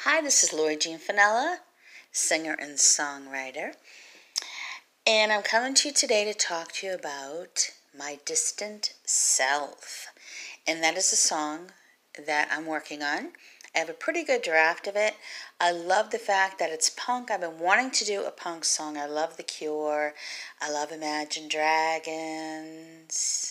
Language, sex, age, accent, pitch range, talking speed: English, female, 40-59, American, 150-200 Hz, 160 wpm